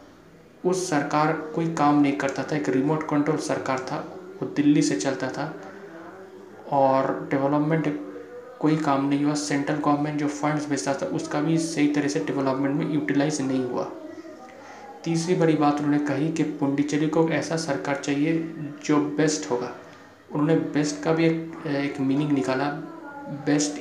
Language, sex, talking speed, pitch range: Hindi, male, 155 wpm, 140-155 Hz